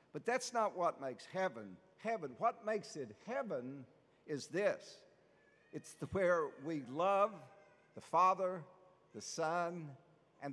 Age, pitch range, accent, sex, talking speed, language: 60-79, 145-200 Hz, American, male, 125 wpm, English